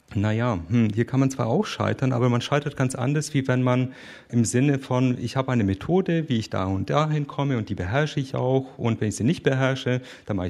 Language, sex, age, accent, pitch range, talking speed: German, male, 40-59, German, 110-140 Hz, 235 wpm